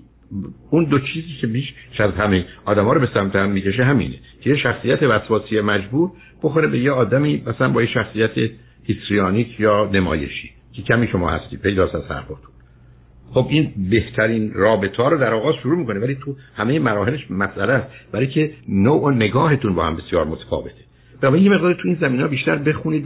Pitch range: 105-135 Hz